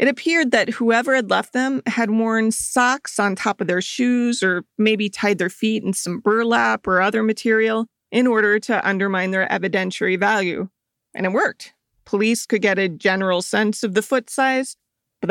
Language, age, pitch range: English, 40-59, 190-240 Hz